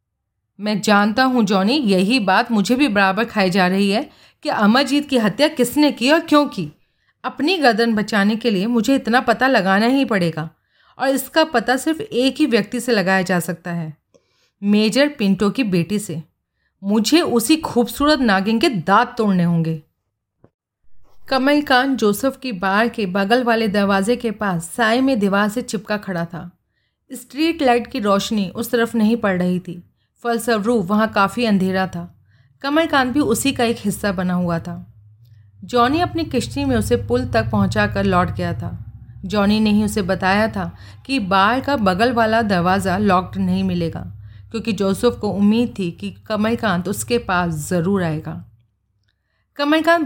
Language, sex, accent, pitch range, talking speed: Hindi, female, native, 180-240 Hz, 165 wpm